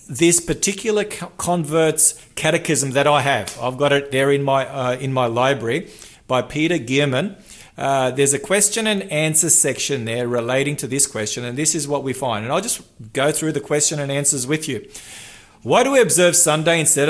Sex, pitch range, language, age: male, 130-165 Hz, English, 40-59